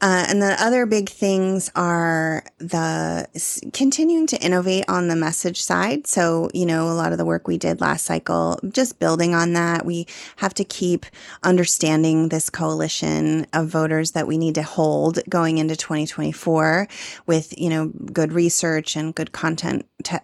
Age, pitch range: 30-49, 155-180 Hz